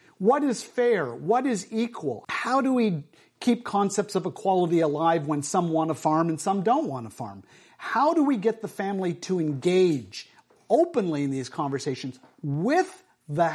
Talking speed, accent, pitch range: 175 wpm, American, 165-220 Hz